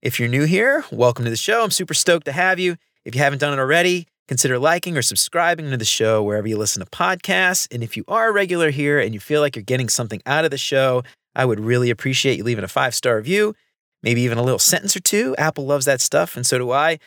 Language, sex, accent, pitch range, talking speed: English, male, American, 125-170 Hz, 260 wpm